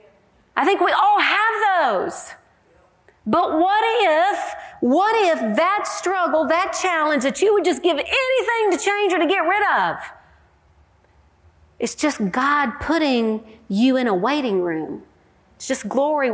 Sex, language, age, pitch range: female, English, 50-69, 230-370 Hz